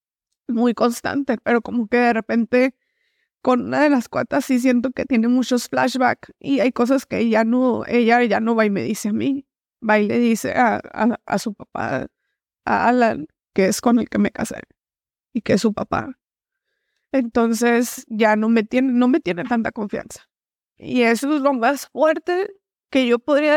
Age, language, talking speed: 20-39, English, 190 wpm